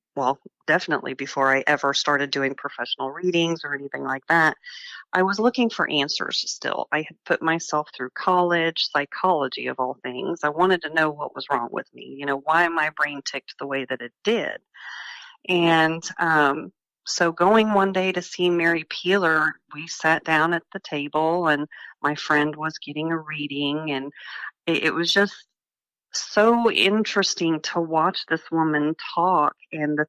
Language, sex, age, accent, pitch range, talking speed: English, female, 40-59, American, 150-185 Hz, 170 wpm